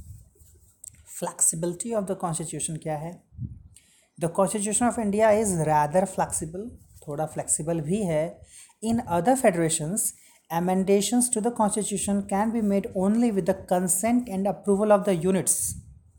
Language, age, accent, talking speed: Hindi, 30-49, native, 135 wpm